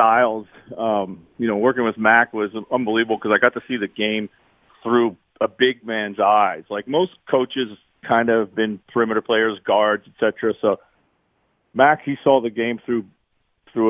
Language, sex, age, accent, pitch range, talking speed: English, male, 40-59, American, 105-120 Hz, 170 wpm